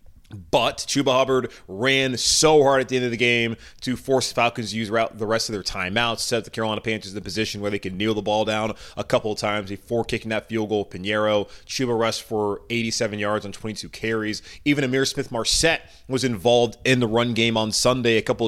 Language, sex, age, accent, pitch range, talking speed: English, male, 20-39, American, 105-125 Hz, 225 wpm